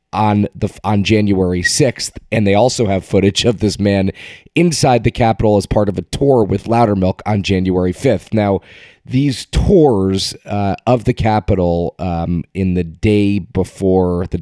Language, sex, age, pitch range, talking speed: English, male, 30-49, 95-115 Hz, 160 wpm